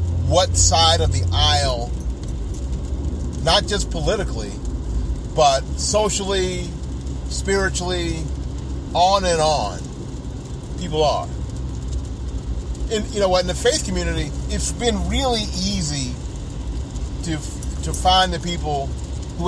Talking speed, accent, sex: 105 wpm, American, male